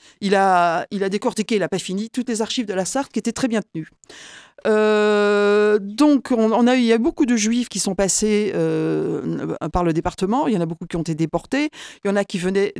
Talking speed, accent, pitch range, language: 250 wpm, French, 180-230 Hz, French